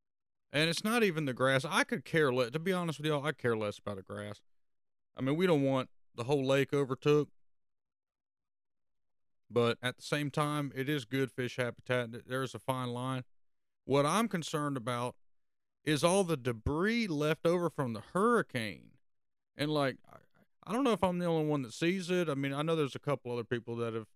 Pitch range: 125-165 Hz